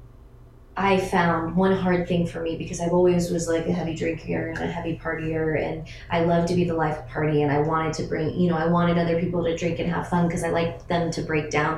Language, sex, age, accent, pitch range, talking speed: English, female, 20-39, American, 145-175 Hz, 260 wpm